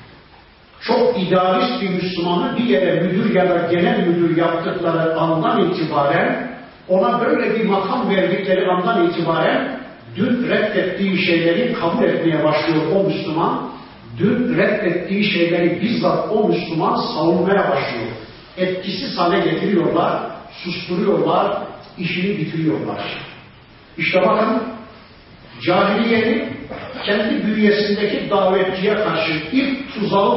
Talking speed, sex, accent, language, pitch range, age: 105 wpm, male, native, Turkish, 175-220 Hz, 40-59